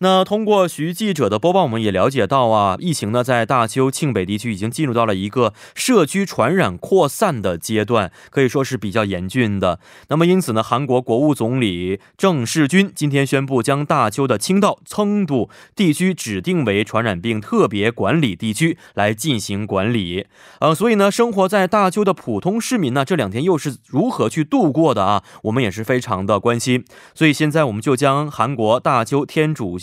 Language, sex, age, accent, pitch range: Korean, male, 20-39, Chinese, 115-185 Hz